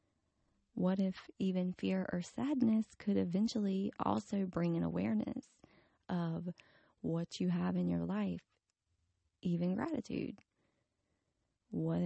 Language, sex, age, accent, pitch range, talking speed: English, female, 20-39, American, 165-210 Hz, 110 wpm